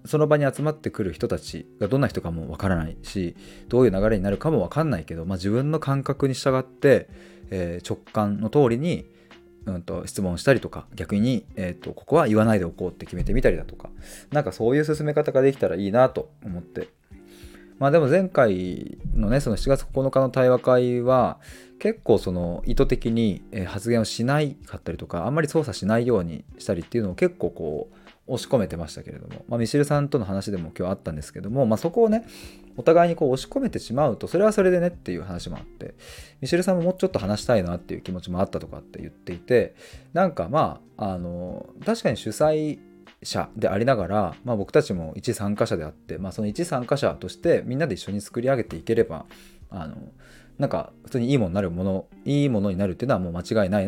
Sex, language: male, Japanese